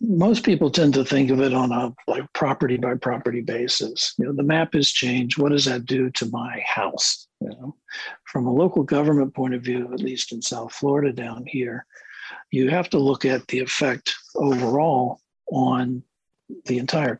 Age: 60-79